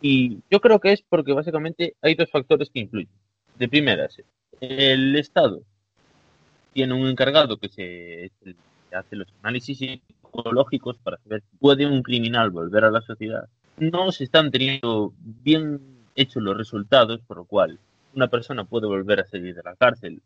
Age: 20-39